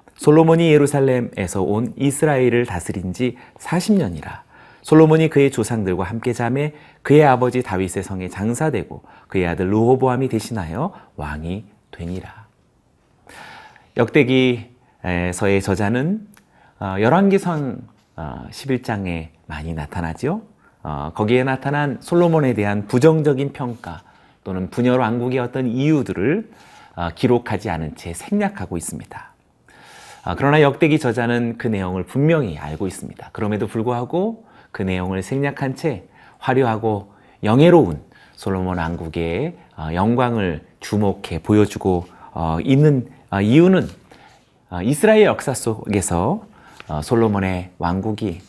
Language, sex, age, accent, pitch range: Korean, male, 30-49, native, 95-140 Hz